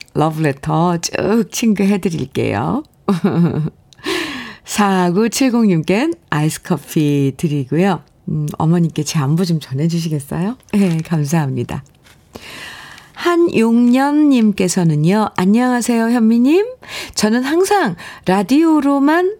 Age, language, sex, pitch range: 50-69, Korean, female, 155-215 Hz